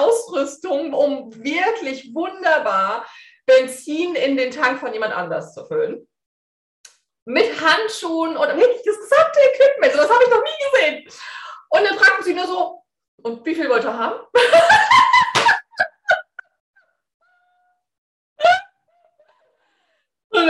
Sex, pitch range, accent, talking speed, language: female, 235-390 Hz, German, 110 wpm, German